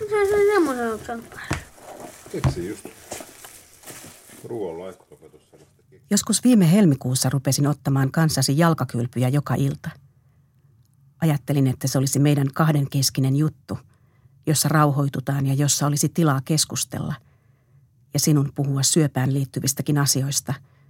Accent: native